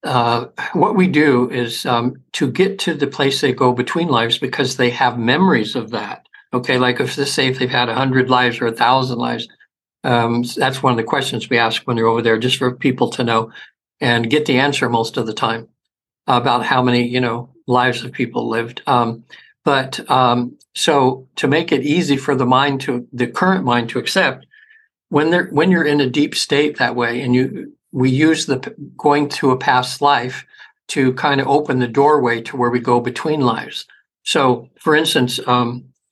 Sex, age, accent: male, 60-79, American